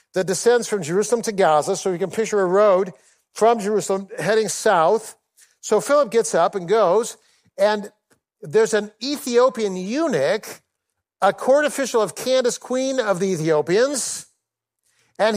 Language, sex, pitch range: English, male, 195-250 Hz